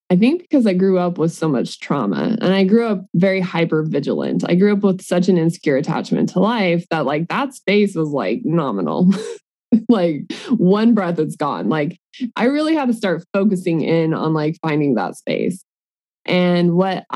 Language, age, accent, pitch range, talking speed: English, 20-39, American, 175-235 Hz, 185 wpm